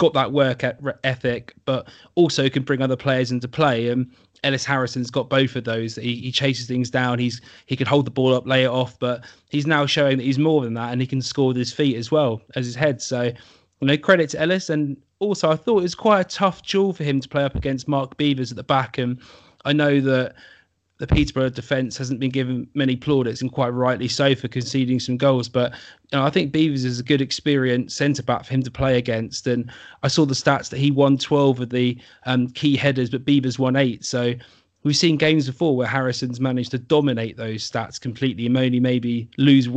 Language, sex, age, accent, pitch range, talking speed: English, male, 20-39, British, 125-145 Hz, 235 wpm